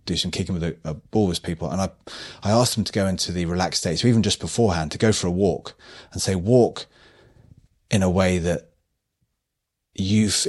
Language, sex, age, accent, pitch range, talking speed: English, male, 30-49, British, 90-105 Hz, 220 wpm